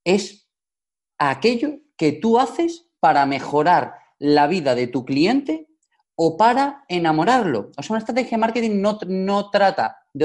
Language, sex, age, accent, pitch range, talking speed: Spanish, male, 30-49, Spanish, 155-215 Hz, 145 wpm